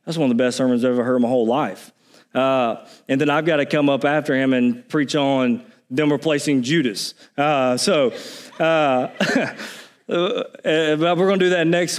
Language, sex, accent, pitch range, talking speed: English, male, American, 140-175 Hz, 190 wpm